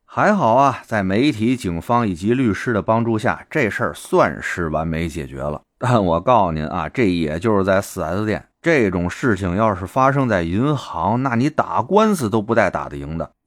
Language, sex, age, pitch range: Chinese, male, 30-49, 90-120 Hz